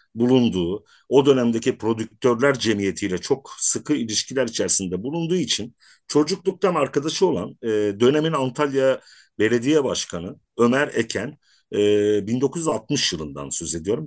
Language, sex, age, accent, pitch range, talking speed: Turkish, male, 50-69, native, 105-155 Hz, 110 wpm